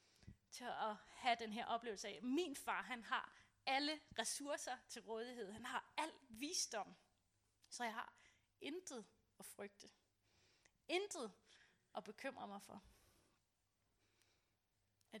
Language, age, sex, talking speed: Danish, 30-49, female, 125 wpm